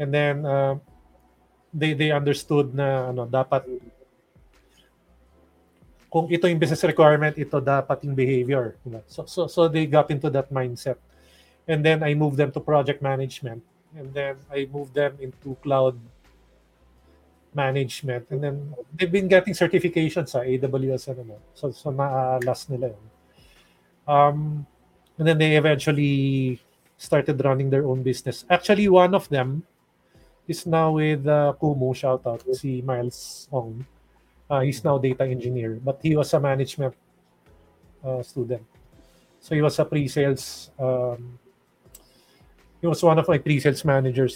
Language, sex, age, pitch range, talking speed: Filipino, male, 30-49, 125-155 Hz, 140 wpm